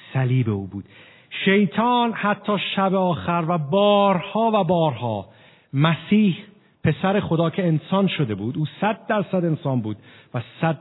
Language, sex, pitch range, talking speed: Persian, male, 120-175 Hz, 140 wpm